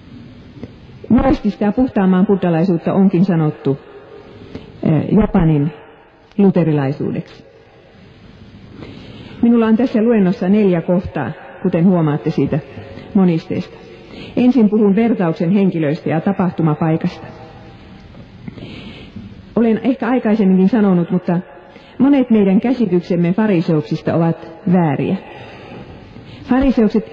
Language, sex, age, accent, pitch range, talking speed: Finnish, female, 40-59, native, 165-220 Hz, 85 wpm